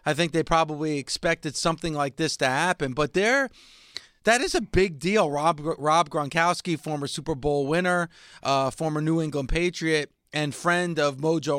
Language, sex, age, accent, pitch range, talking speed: English, male, 30-49, American, 135-170 Hz, 170 wpm